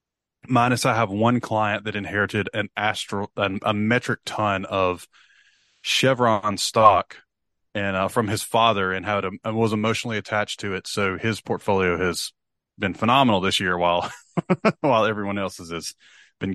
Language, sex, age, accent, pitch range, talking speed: English, male, 30-49, American, 95-110 Hz, 150 wpm